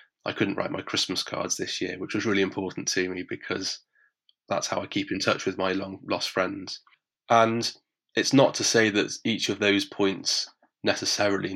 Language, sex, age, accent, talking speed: English, male, 20-39, British, 190 wpm